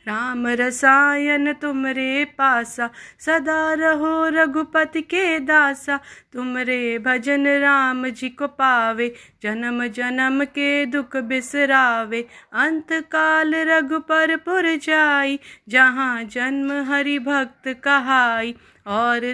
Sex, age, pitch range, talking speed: female, 30-49, 250-290 Hz, 95 wpm